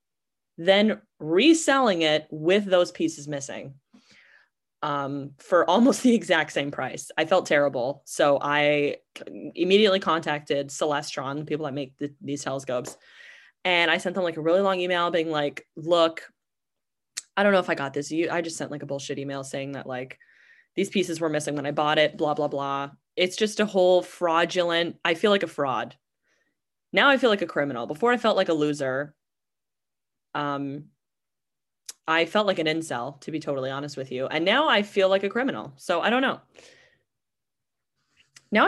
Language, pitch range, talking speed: English, 145-185 Hz, 175 wpm